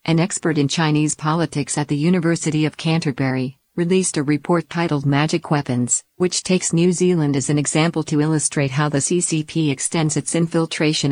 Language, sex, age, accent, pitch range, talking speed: English, female, 50-69, American, 145-165 Hz, 165 wpm